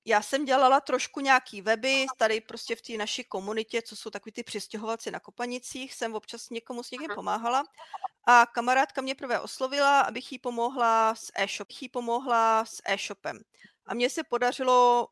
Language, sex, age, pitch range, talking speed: Czech, female, 40-59, 215-260 Hz, 170 wpm